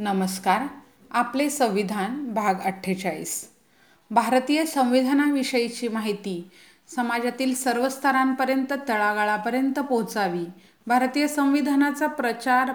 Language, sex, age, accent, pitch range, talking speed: Hindi, female, 30-49, native, 200-265 Hz, 90 wpm